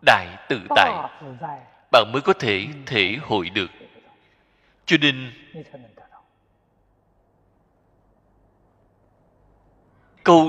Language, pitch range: Vietnamese, 105-155 Hz